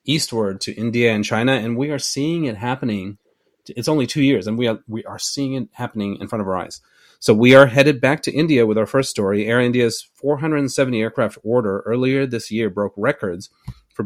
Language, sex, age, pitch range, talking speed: English, male, 30-49, 105-125 Hz, 210 wpm